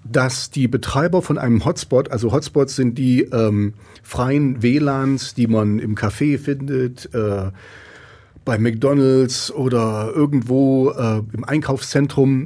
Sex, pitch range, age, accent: male, 110-135 Hz, 40-59, German